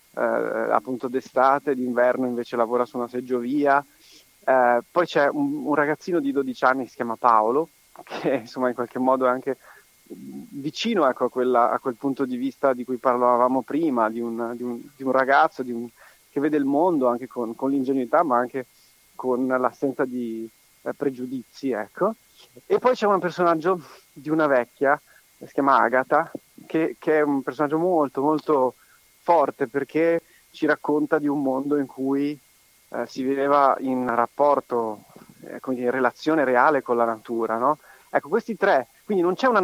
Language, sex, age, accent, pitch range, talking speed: Italian, male, 30-49, native, 125-160 Hz, 175 wpm